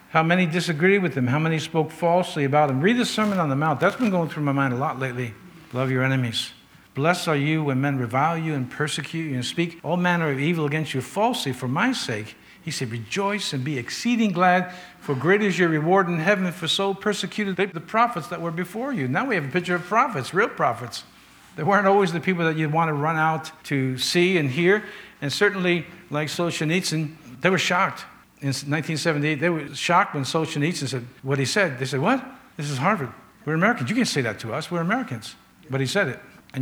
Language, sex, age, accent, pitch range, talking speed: English, male, 60-79, American, 135-180 Hz, 225 wpm